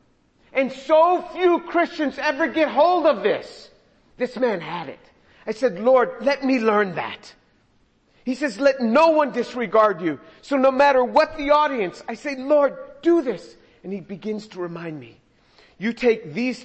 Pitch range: 190-265 Hz